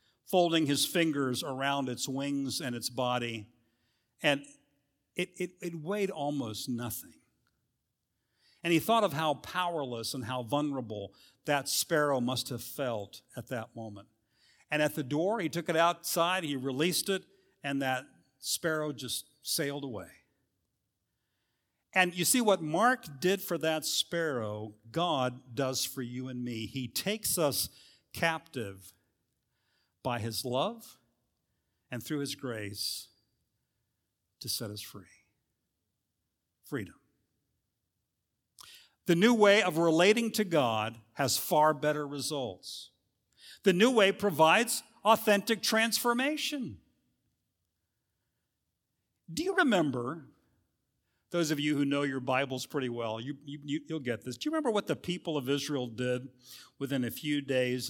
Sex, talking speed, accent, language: male, 130 wpm, American, English